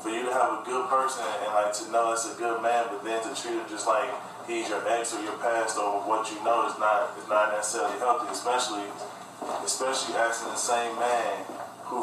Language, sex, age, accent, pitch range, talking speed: English, male, 20-39, American, 110-120 Hz, 225 wpm